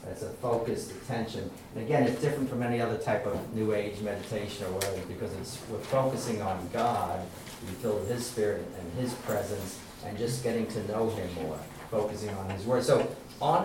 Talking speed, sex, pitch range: 200 wpm, male, 110-135 Hz